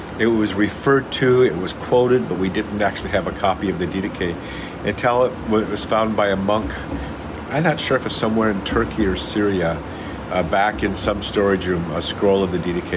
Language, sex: English, male